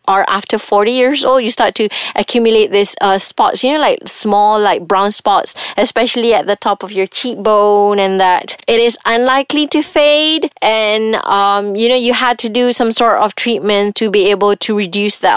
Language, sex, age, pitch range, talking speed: English, female, 20-39, 195-240 Hz, 200 wpm